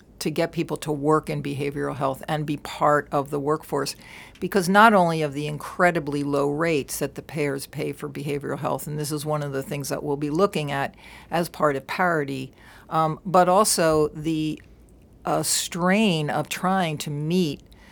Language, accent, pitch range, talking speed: English, American, 145-175 Hz, 185 wpm